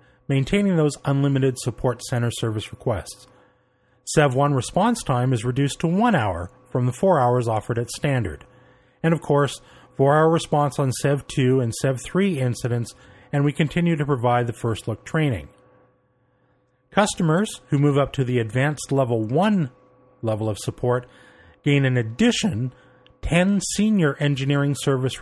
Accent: American